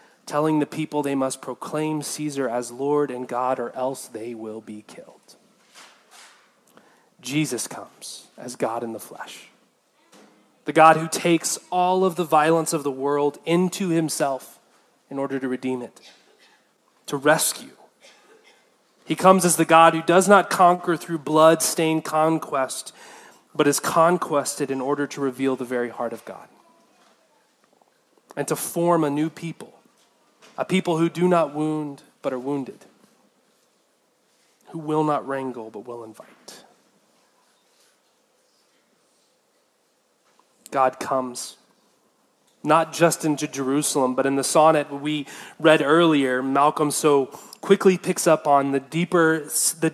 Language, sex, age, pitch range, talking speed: English, male, 30-49, 135-160 Hz, 135 wpm